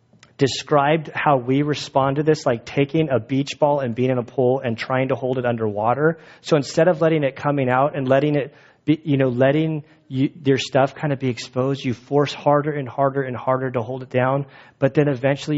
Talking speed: 220 wpm